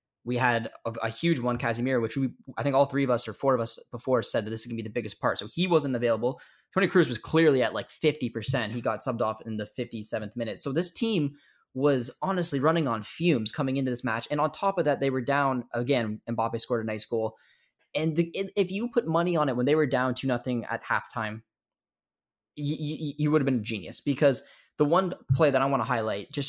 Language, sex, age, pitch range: English, male, 10-29, 115-145 Hz